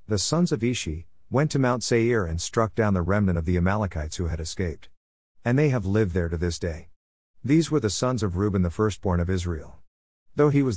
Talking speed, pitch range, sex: 225 wpm, 85-120 Hz, male